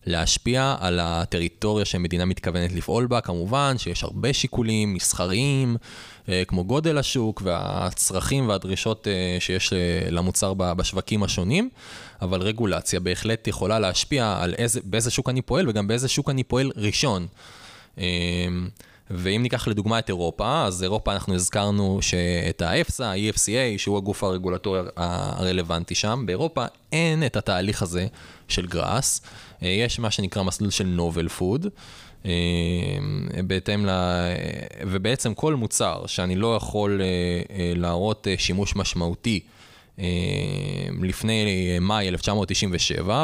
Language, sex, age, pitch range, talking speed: Hebrew, male, 20-39, 90-110 Hz, 115 wpm